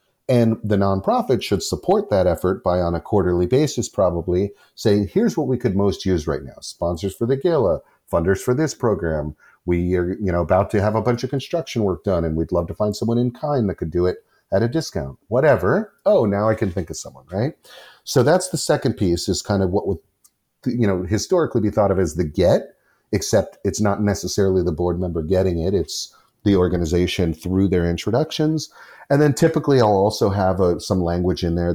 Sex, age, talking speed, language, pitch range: male, 40-59, 210 wpm, English, 90-120 Hz